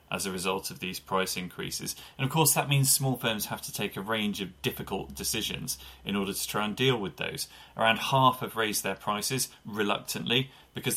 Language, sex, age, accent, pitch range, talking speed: English, male, 30-49, British, 100-130 Hz, 210 wpm